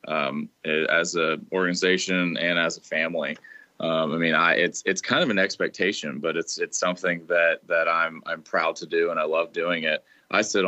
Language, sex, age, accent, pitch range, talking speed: English, male, 20-39, American, 85-90 Hz, 200 wpm